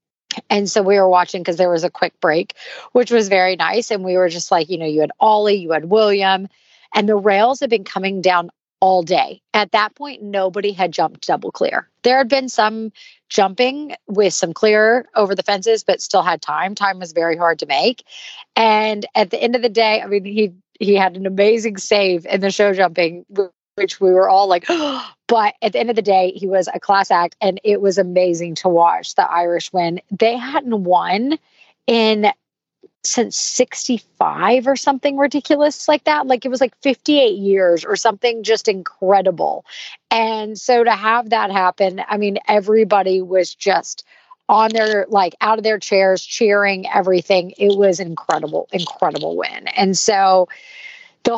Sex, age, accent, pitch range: female, 30-49, American, 190-230 Hz